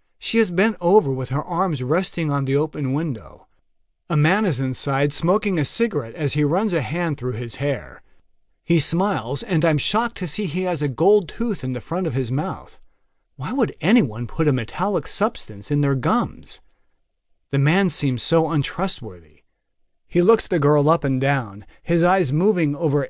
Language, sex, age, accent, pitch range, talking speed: English, male, 40-59, American, 135-185 Hz, 185 wpm